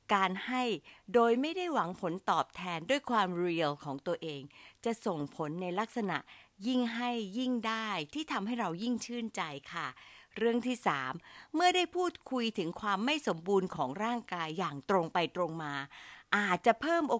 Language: Thai